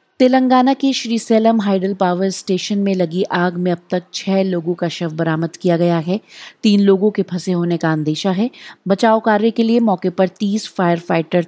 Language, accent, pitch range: Hindi, native, 170-200 Hz